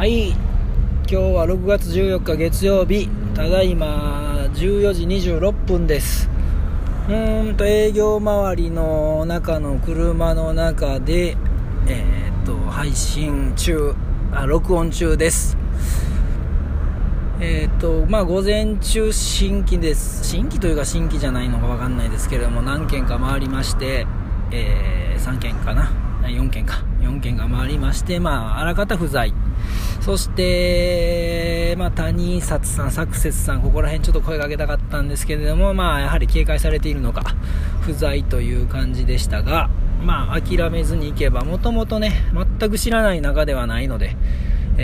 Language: Japanese